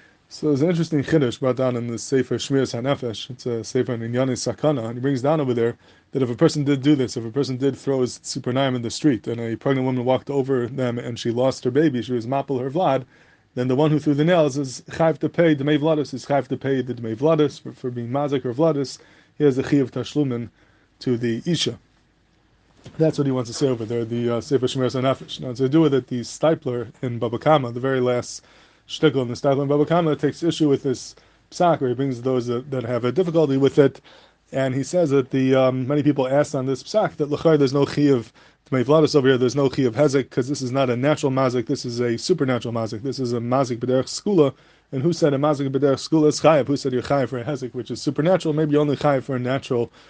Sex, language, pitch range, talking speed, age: male, English, 125-145 Hz, 250 wpm, 20-39